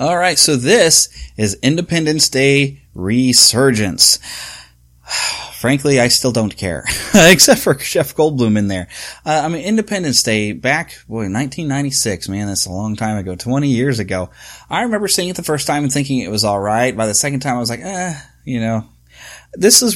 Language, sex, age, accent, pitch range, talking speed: English, male, 30-49, American, 110-160 Hz, 185 wpm